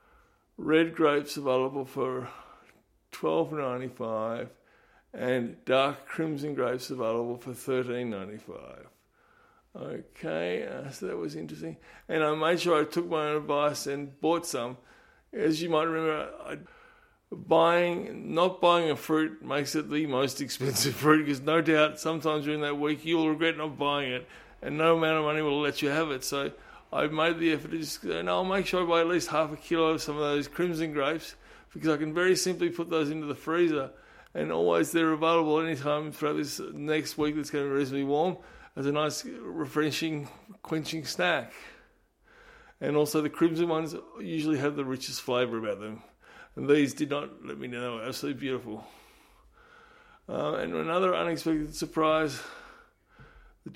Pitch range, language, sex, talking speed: 140-165 Hz, English, male, 170 wpm